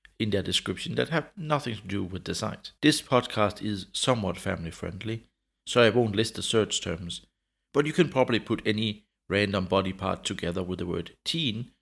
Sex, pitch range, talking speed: male, 90-120 Hz, 190 wpm